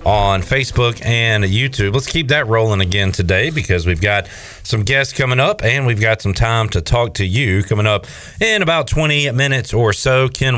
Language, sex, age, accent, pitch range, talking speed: English, male, 40-59, American, 95-130 Hz, 200 wpm